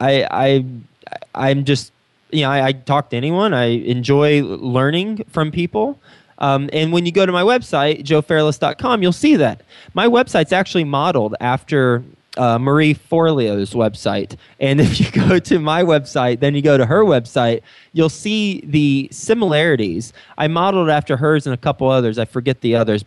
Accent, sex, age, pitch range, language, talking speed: American, male, 20-39, 135-180 Hz, English, 170 wpm